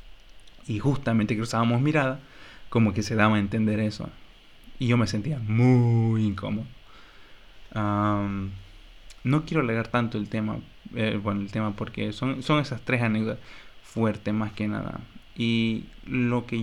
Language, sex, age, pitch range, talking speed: English, male, 20-39, 105-125 Hz, 150 wpm